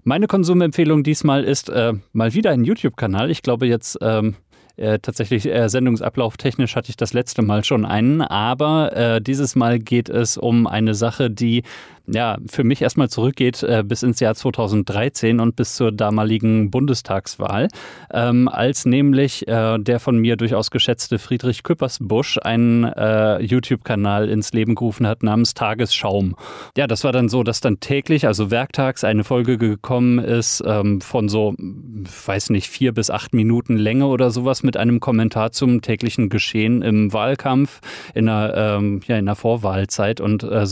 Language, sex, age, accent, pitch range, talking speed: German, male, 30-49, German, 110-130 Hz, 160 wpm